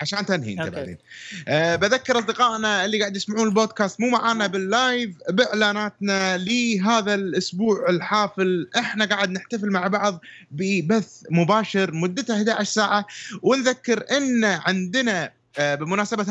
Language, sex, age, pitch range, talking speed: Arabic, male, 20-39, 180-225 Hz, 120 wpm